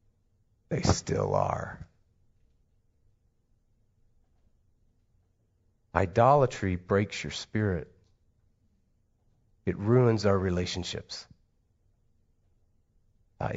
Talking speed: 55 wpm